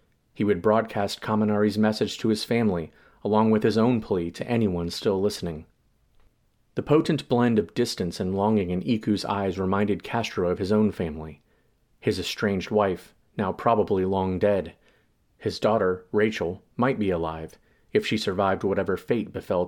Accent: American